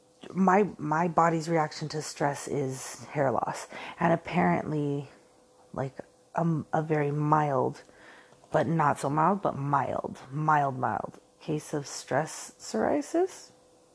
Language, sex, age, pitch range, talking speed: English, female, 30-49, 150-185 Hz, 120 wpm